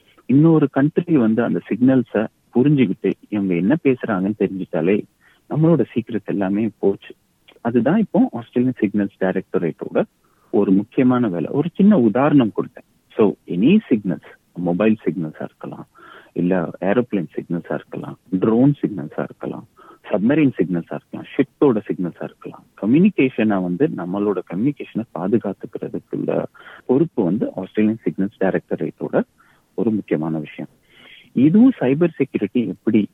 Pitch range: 95-120 Hz